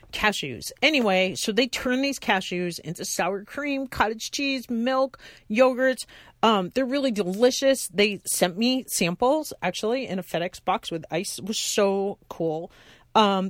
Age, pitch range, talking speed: 40-59, 175-245 Hz, 150 wpm